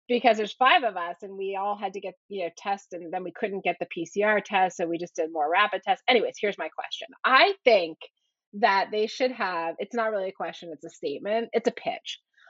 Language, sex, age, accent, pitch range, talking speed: English, female, 30-49, American, 195-270 Hz, 240 wpm